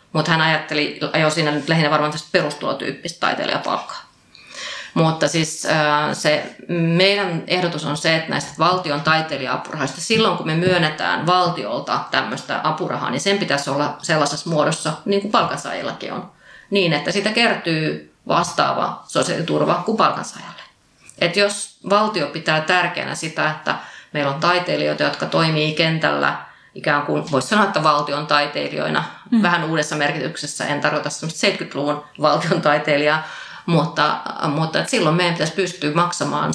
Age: 30-49